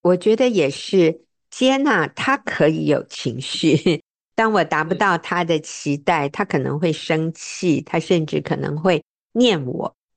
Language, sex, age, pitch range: Chinese, female, 50-69, 150-195 Hz